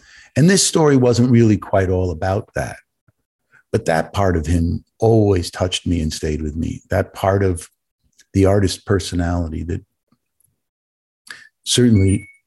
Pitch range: 85-105 Hz